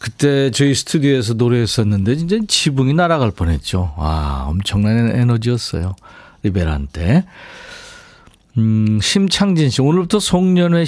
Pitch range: 100-140 Hz